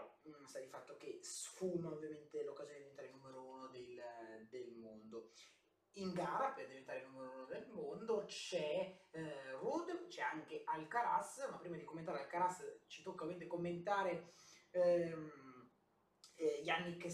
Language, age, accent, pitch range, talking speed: Italian, 20-39, native, 160-200 Hz, 145 wpm